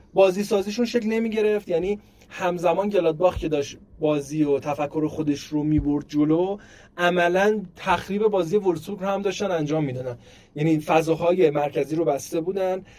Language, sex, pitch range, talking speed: Persian, male, 150-195 Hz, 150 wpm